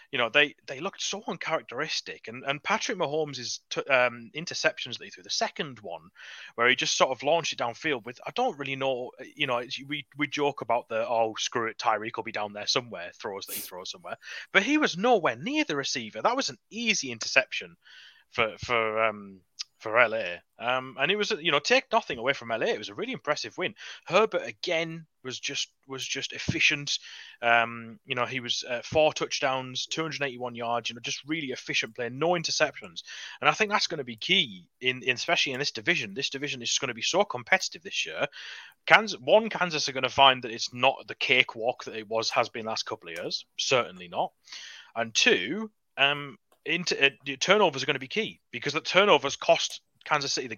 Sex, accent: male, British